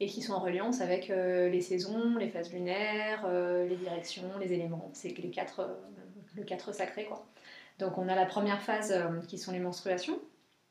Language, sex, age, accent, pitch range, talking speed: French, female, 20-39, French, 180-210 Hz, 175 wpm